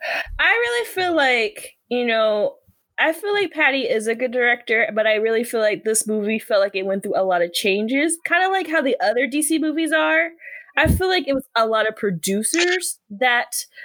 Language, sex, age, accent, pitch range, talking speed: English, female, 20-39, American, 225-335 Hz, 210 wpm